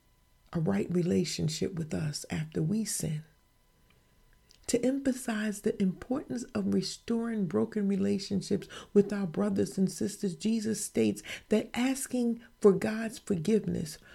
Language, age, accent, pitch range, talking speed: English, 40-59, American, 175-220 Hz, 120 wpm